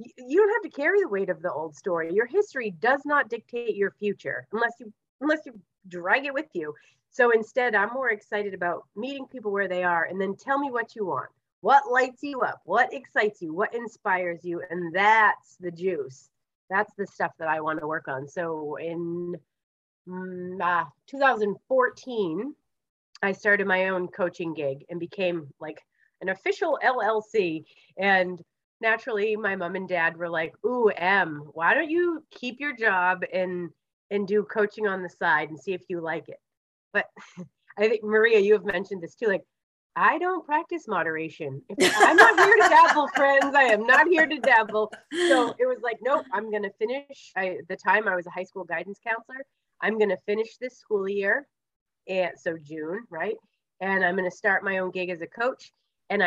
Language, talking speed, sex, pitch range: English, 195 wpm, female, 175-245 Hz